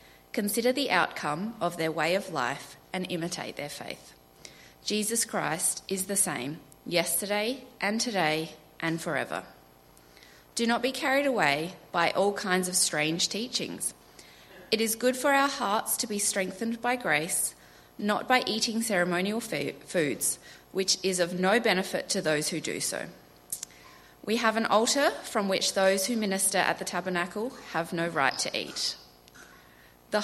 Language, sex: English, female